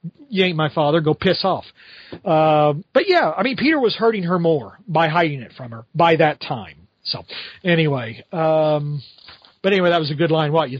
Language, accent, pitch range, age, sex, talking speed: English, American, 155-185 Hz, 40-59, male, 205 wpm